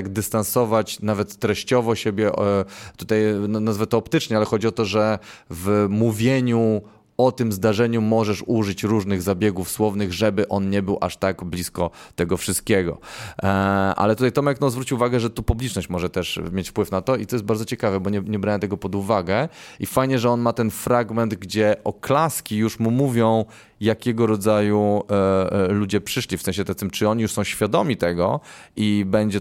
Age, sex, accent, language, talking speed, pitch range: 20-39, male, native, Polish, 180 wpm, 95-115 Hz